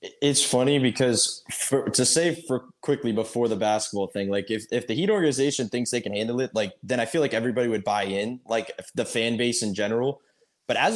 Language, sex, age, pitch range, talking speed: English, male, 10-29, 115-140 Hz, 215 wpm